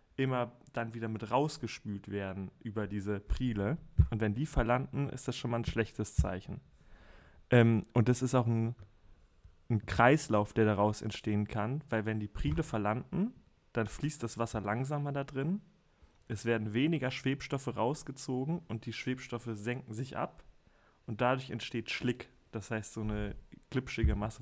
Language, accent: German, German